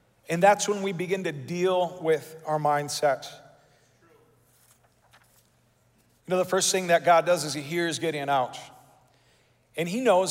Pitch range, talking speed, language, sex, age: 180-225 Hz, 150 wpm, English, male, 40-59